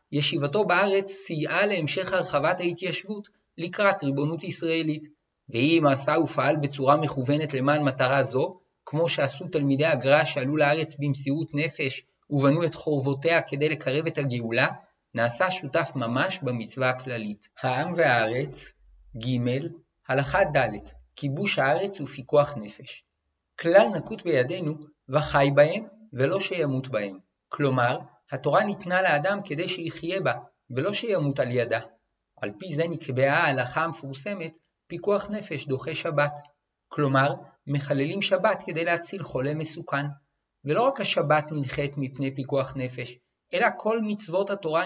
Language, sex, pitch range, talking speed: Hebrew, male, 140-170 Hz, 125 wpm